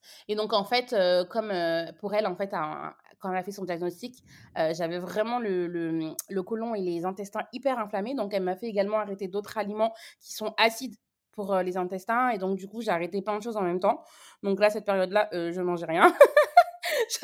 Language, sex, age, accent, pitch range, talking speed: French, female, 20-39, French, 185-270 Hz, 235 wpm